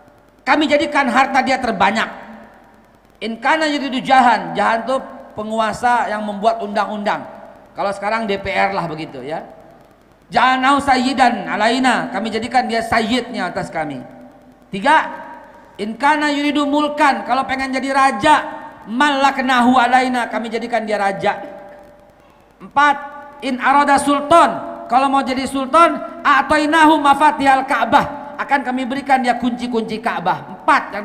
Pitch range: 230-280 Hz